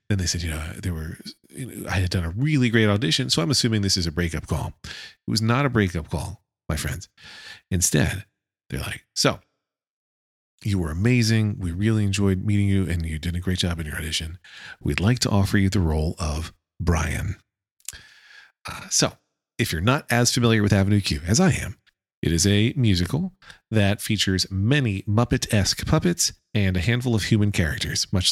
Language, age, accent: English, 40-59, American